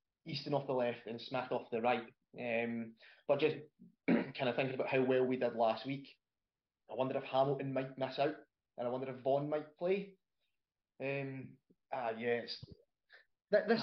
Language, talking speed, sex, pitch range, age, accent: English, 180 wpm, male, 125-160 Hz, 20-39, British